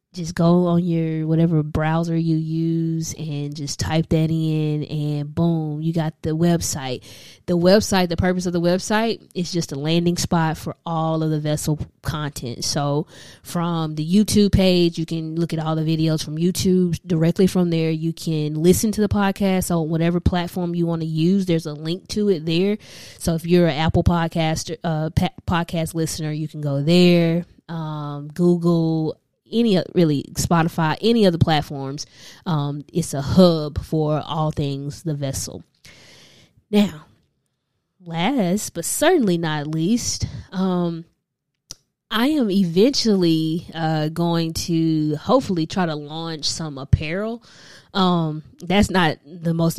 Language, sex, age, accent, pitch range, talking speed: English, female, 20-39, American, 150-175 Hz, 155 wpm